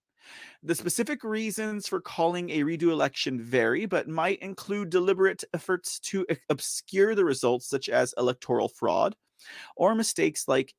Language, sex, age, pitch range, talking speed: English, male, 30-49, 130-180 Hz, 140 wpm